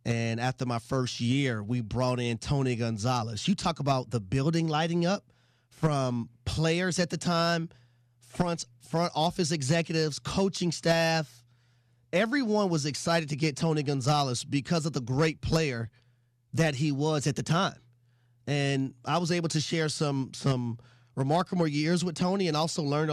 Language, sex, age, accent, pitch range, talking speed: English, male, 30-49, American, 130-190 Hz, 160 wpm